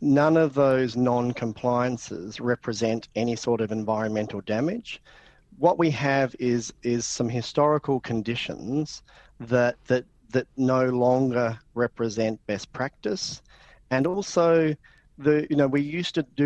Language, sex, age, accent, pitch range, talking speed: English, male, 40-59, Australian, 115-140 Hz, 130 wpm